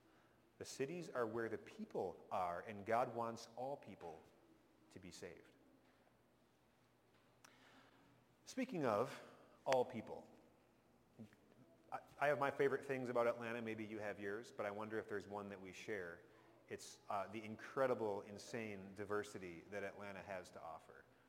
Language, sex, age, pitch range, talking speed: English, male, 30-49, 105-135 Hz, 140 wpm